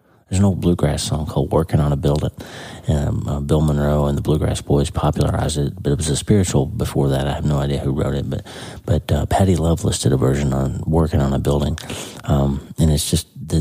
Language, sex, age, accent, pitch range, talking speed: English, male, 40-59, American, 75-100 Hz, 235 wpm